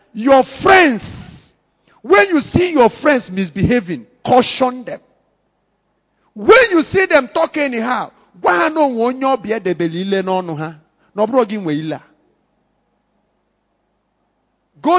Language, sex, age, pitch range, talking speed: English, male, 50-69, 200-290 Hz, 120 wpm